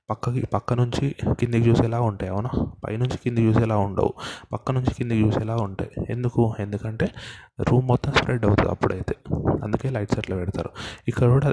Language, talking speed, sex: Telugu, 150 wpm, male